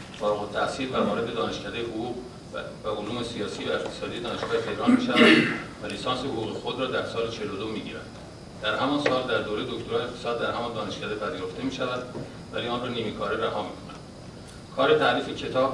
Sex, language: male, Persian